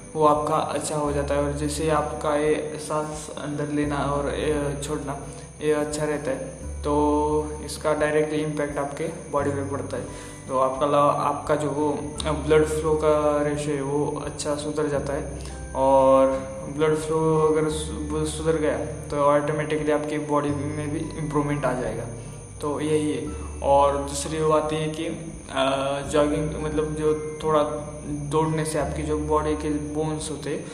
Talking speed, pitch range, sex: 160 wpm, 140-155 Hz, male